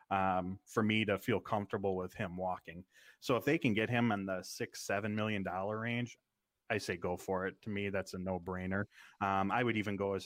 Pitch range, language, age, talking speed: 100-115 Hz, English, 20-39, 220 wpm